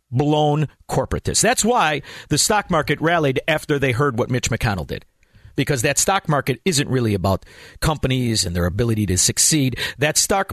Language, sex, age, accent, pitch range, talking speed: English, male, 50-69, American, 120-195 Hz, 170 wpm